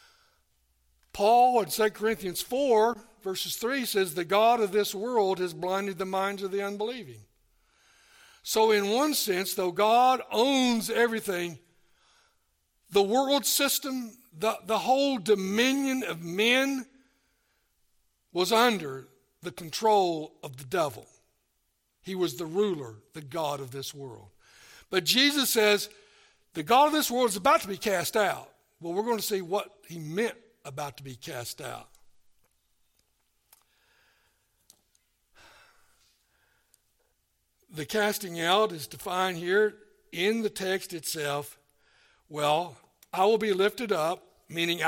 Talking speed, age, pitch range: 130 wpm, 60-79, 155-225 Hz